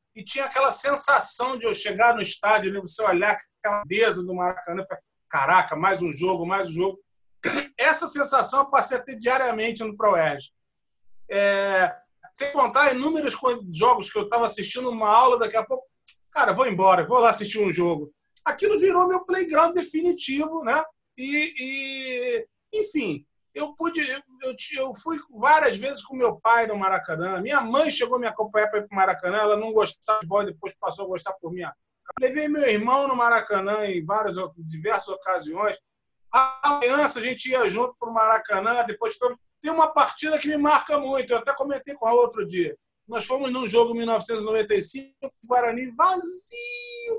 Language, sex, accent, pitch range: Portuguese, male, Brazilian, 210-295 Hz